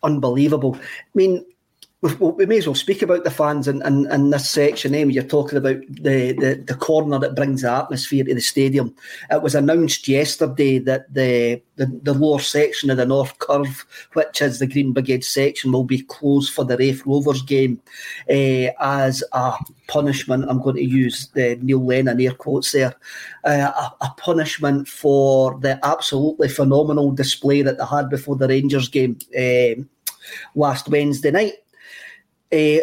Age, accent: 40-59, British